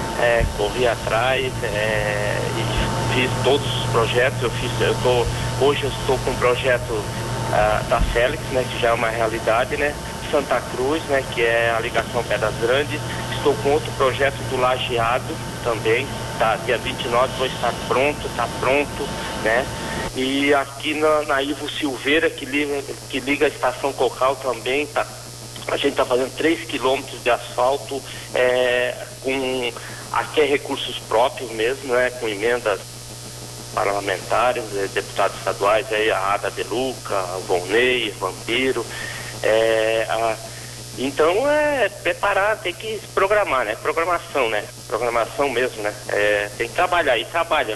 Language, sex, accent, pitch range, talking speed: Portuguese, male, Brazilian, 110-140 Hz, 145 wpm